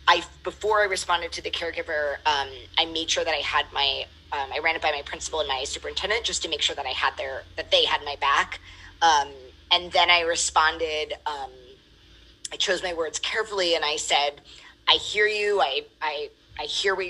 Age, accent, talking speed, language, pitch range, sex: 20-39, American, 210 wpm, English, 155-210 Hz, female